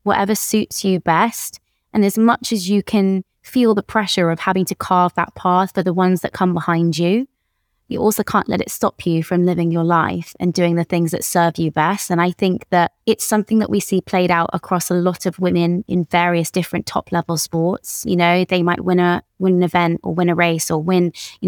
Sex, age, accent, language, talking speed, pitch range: female, 20-39, British, English, 230 wpm, 175-200 Hz